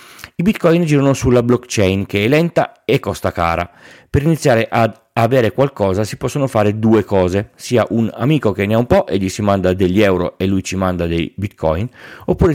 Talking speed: 200 wpm